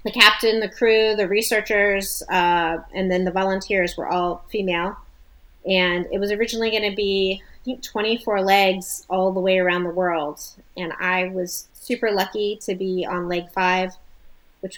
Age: 30-49